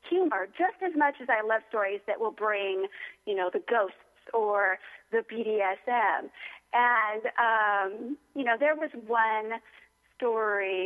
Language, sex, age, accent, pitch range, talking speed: English, female, 40-59, American, 220-290 Hz, 145 wpm